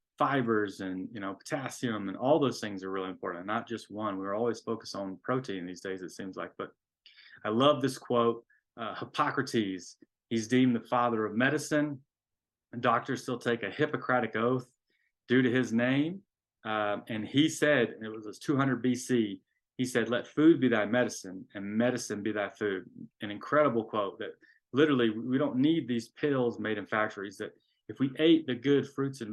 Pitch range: 105-130 Hz